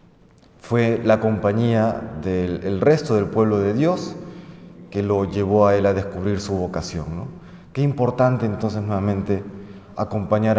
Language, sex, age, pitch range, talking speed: Spanish, male, 30-49, 100-125 Hz, 140 wpm